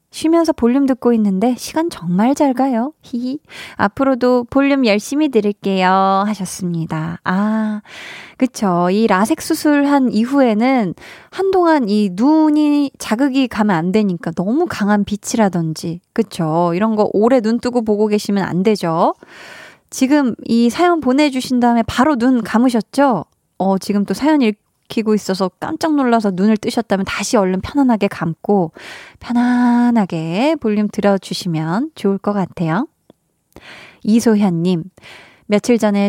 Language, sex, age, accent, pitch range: Korean, female, 20-39, native, 200-275 Hz